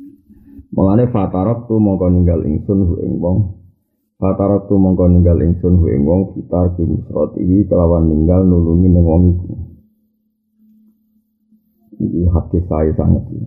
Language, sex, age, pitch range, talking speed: Indonesian, male, 30-49, 85-105 Hz, 115 wpm